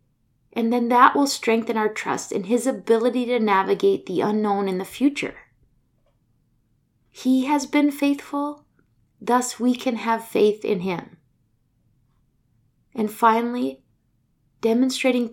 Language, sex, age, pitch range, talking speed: English, female, 20-39, 200-245 Hz, 120 wpm